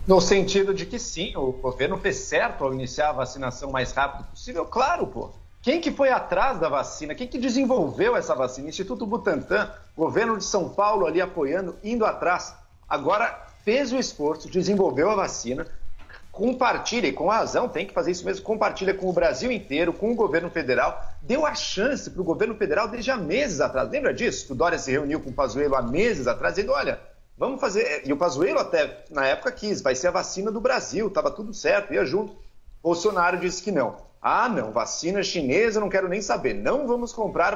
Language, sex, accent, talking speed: Portuguese, male, Brazilian, 200 wpm